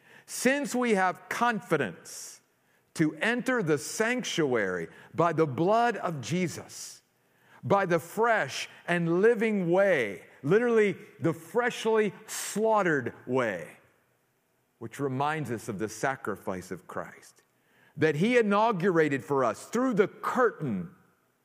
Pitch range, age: 155-220 Hz, 50-69